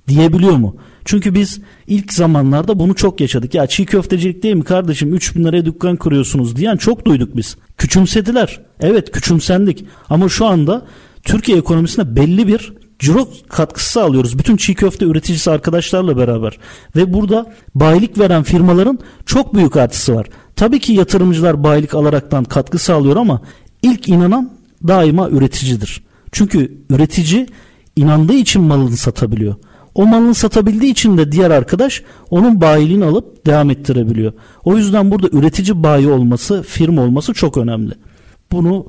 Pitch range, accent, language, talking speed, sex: 140-205 Hz, native, Turkish, 145 wpm, male